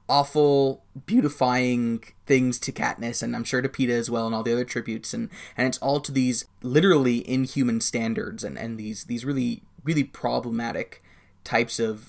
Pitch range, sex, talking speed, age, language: 115-140 Hz, male, 175 wpm, 20-39, English